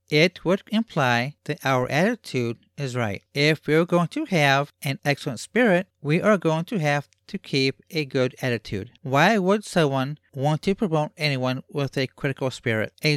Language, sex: English, male